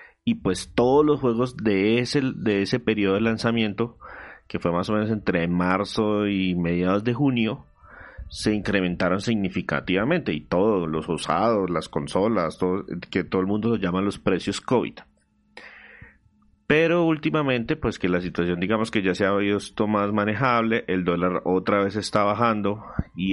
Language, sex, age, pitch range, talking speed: Spanish, male, 30-49, 90-115 Hz, 160 wpm